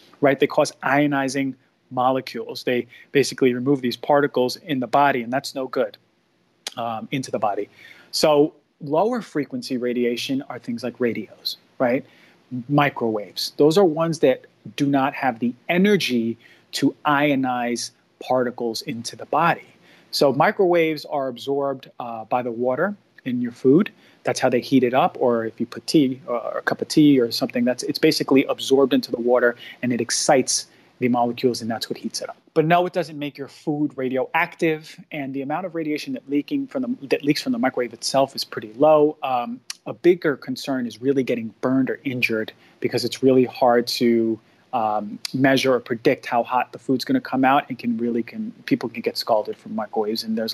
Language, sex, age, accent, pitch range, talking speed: English, male, 30-49, American, 120-150 Hz, 190 wpm